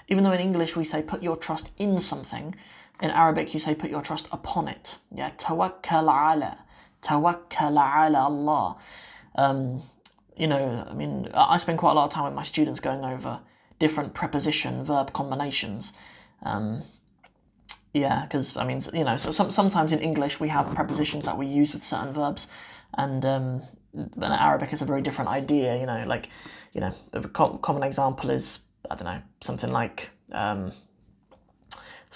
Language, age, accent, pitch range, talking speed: English, 20-39, British, 135-160 Hz, 165 wpm